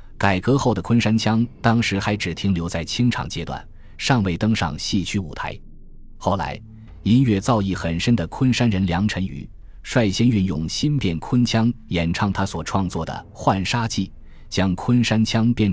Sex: male